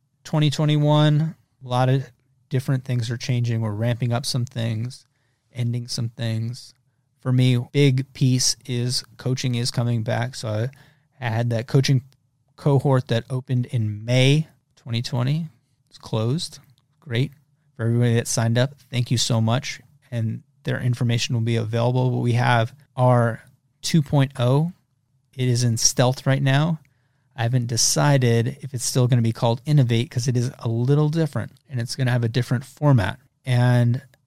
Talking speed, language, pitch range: 160 wpm, English, 120-135 Hz